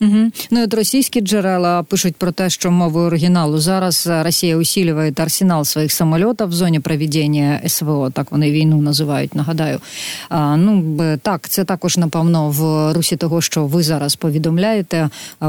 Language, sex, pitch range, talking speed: Ukrainian, female, 150-175 Hz, 155 wpm